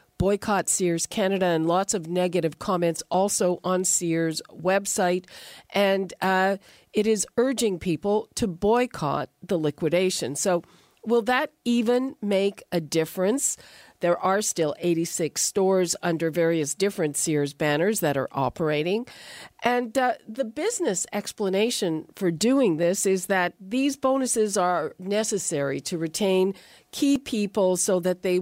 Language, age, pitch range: English, 50-69, 175-215 Hz